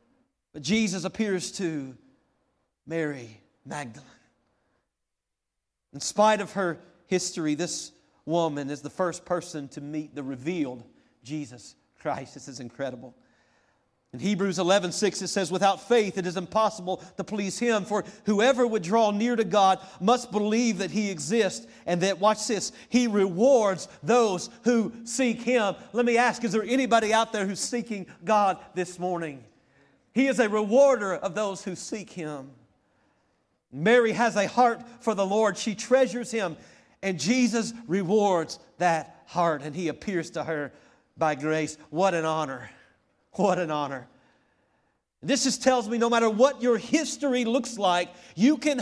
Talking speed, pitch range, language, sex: 155 wpm, 165-240 Hz, English, male